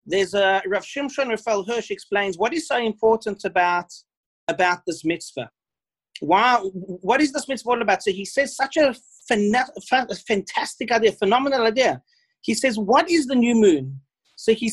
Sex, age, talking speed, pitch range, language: male, 40-59, 165 wpm, 200-265 Hz, English